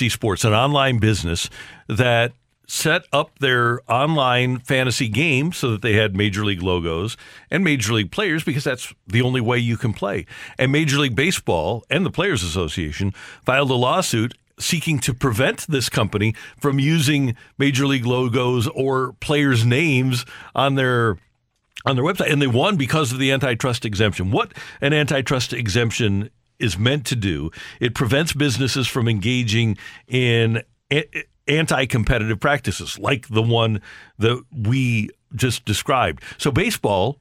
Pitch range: 115-135 Hz